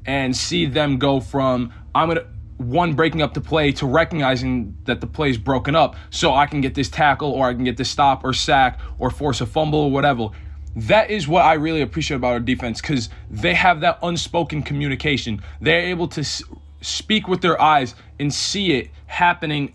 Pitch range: 120-155 Hz